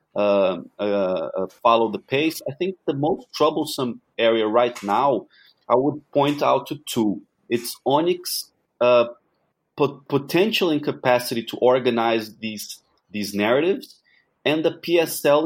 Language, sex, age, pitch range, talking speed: English, male, 30-49, 115-145 Hz, 130 wpm